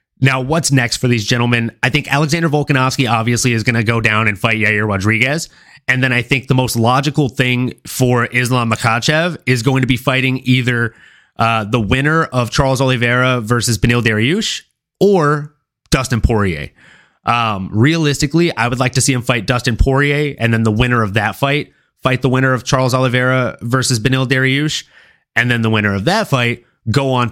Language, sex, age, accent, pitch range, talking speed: English, male, 30-49, American, 115-140 Hz, 185 wpm